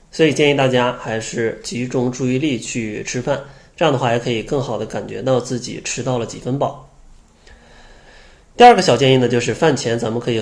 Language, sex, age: Chinese, male, 20-39